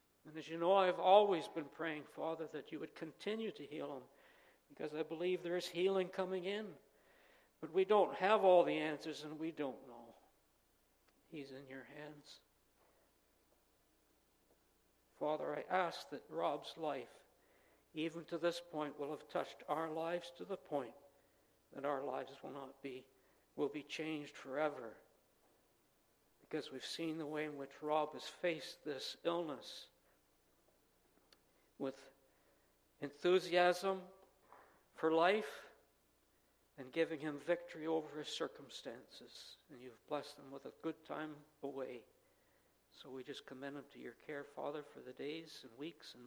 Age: 60-79